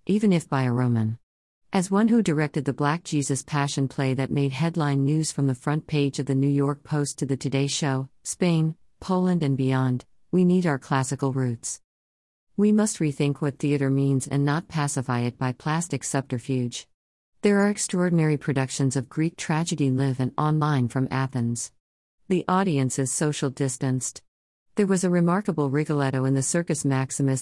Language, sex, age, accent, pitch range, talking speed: English, female, 50-69, American, 130-155 Hz, 175 wpm